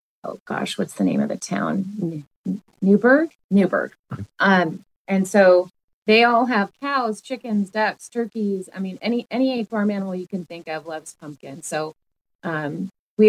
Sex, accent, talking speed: female, American, 165 wpm